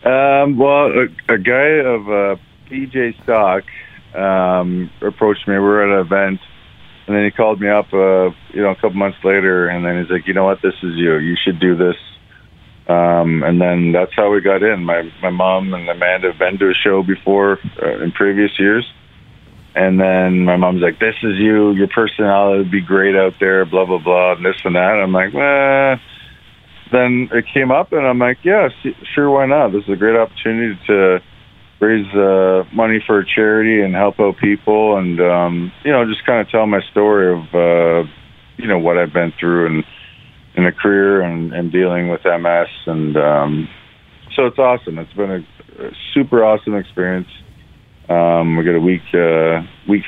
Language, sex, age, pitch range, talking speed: English, male, 50-69, 90-105 Hz, 200 wpm